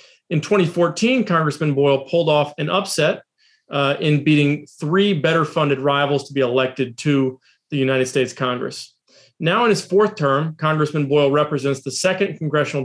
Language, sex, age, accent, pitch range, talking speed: English, male, 40-59, American, 140-175 Hz, 160 wpm